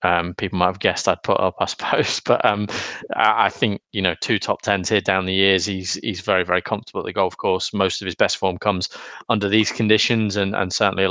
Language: English